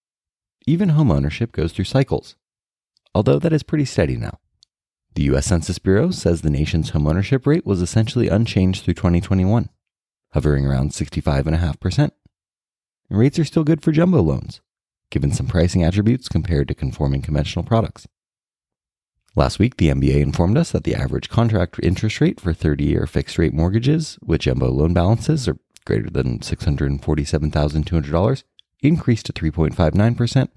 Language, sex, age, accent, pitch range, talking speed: English, male, 30-49, American, 75-125 Hz, 145 wpm